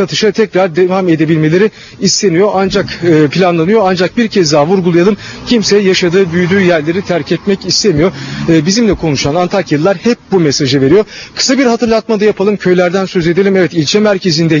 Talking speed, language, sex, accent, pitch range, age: 160 wpm, Turkish, male, native, 155-200 Hz, 40-59